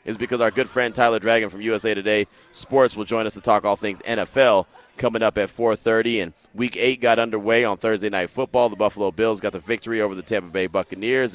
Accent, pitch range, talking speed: American, 115-165 Hz, 225 wpm